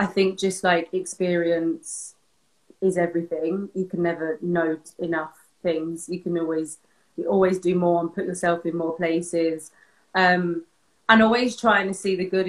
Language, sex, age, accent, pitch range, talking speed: English, female, 20-39, British, 175-205 Hz, 165 wpm